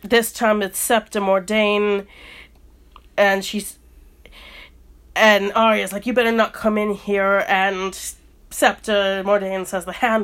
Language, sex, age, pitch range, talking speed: English, female, 30-49, 170-200 Hz, 130 wpm